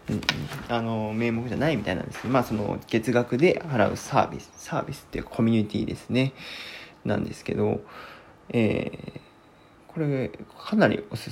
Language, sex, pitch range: Japanese, male, 115-160 Hz